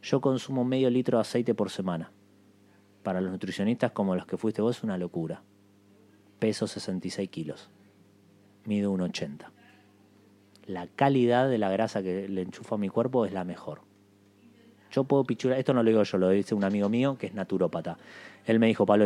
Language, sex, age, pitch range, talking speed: Spanish, male, 30-49, 100-120 Hz, 185 wpm